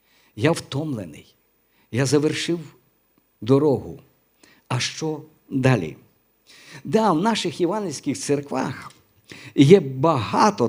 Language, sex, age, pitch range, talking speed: Ukrainian, male, 50-69, 135-185 Hz, 85 wpm